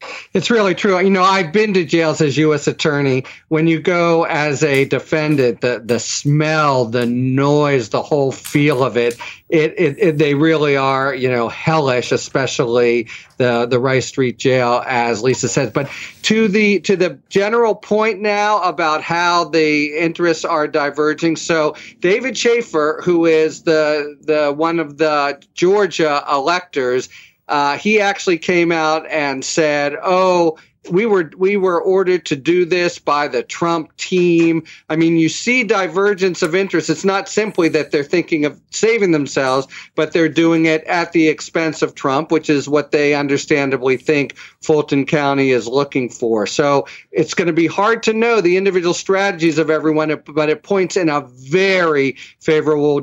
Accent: American